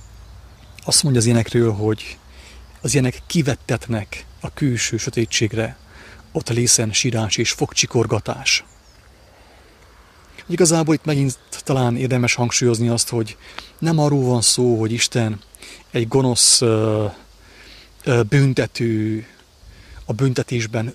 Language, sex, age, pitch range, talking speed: English, male, 30-49, 105-130 Hz, 100 wpm